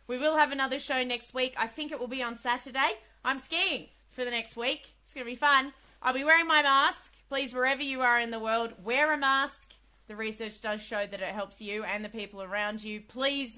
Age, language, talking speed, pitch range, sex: 20-39, English, 235 wpm, 190-255 Hz, female